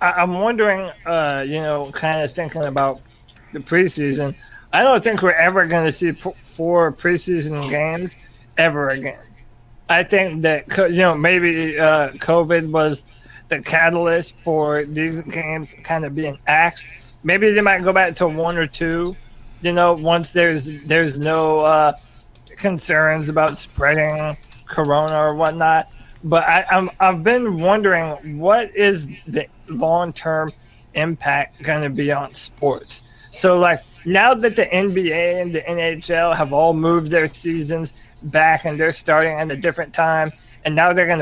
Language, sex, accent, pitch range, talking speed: English, male, American, 145-175 Hz, 155 wpm